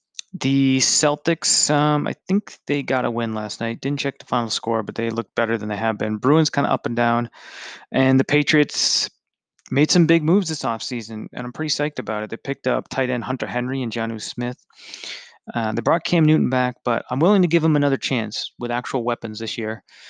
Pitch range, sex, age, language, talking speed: 120-140 Hz, male, 30-49, English, 220 wpm